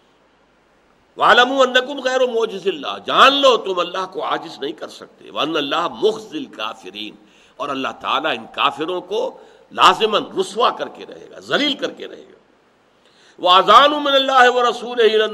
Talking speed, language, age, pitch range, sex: 135 wpm, Urdu, 60-79, 160-245 Hz, male